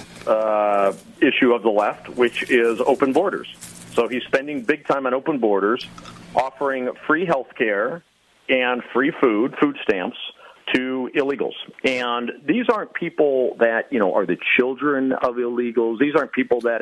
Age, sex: 40-59, male